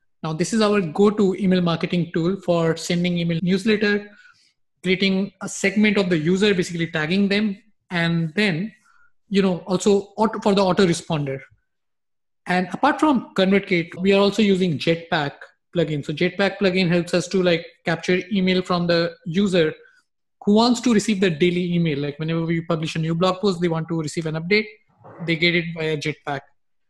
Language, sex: English, male